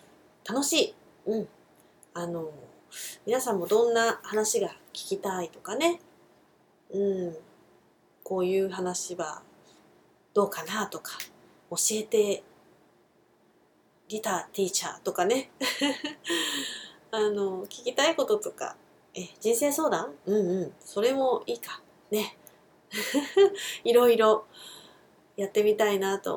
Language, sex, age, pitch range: Japanese, female, 30-49, 180-245 Hz